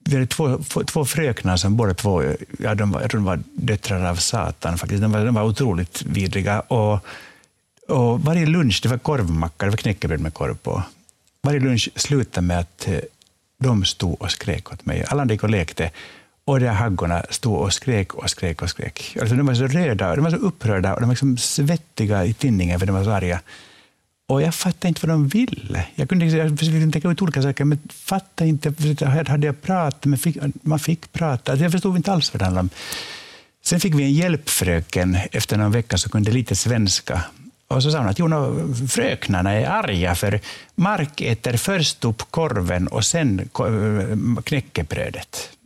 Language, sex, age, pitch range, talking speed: Swedish, male, 60-79, 100-150 Hz, 190 wpm